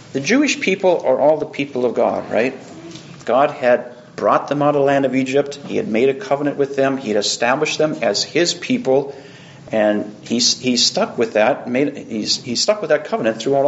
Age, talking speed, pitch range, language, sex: 40-59, 210 wpm, 135-195 Hz, English, male